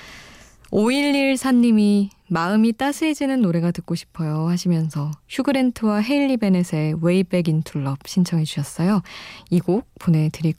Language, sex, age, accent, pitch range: Korean, female, 20-39, native, 160-220 Hz